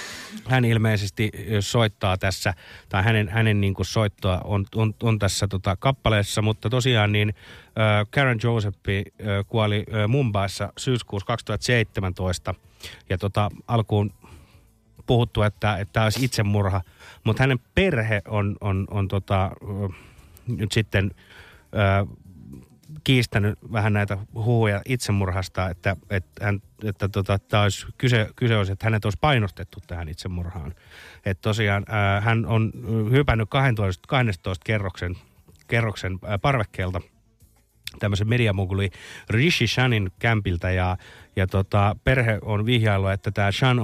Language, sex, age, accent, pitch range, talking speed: Finnish, male, 30-49, native, 95-110 Hz, 125 wpm